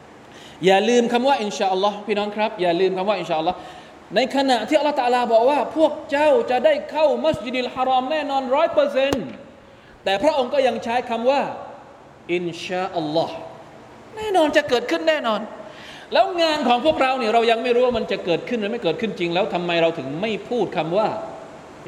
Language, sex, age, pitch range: Thai, male, 20-39, 145-230 Hz